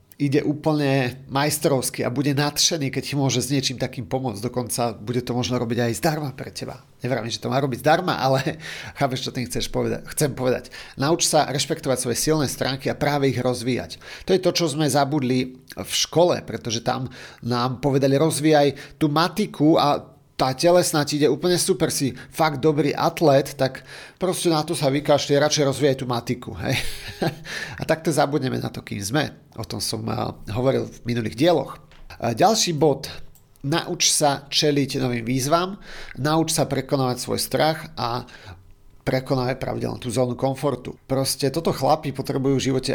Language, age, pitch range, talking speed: Slovak, 40-59, 120-145 Hz, 170 wpm